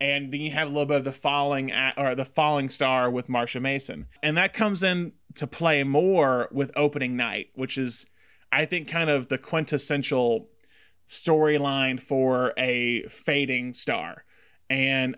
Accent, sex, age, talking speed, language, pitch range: American, male, 20-39, 165 wpm, English, 130-155 Hz